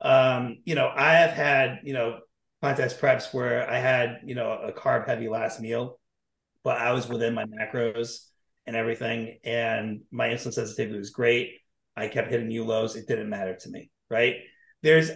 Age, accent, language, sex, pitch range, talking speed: 30-49, American, English, male, 115-140 Hz, 180 wpm